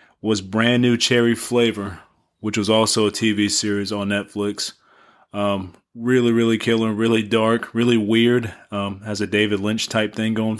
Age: 20-39